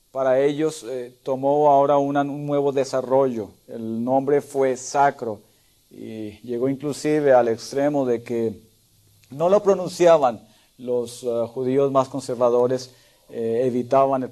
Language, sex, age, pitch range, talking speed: Spanish, male, 50-69, 120-150 Hz, 130 wpm